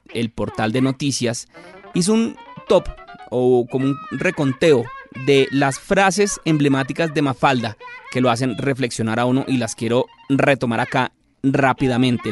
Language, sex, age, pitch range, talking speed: Spanish, male, 30-49, 130-205 Hz, 140 wpm